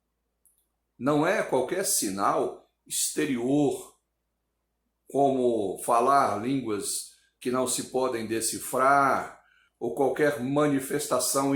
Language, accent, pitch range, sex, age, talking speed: Portuguese, Brazilian, 100-140 Hz, male, 60-79, 85 wpm